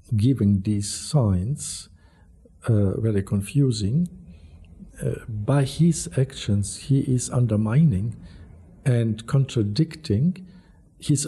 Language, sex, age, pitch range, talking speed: English, male, 60-79, 95-130 Hz, 85 wpm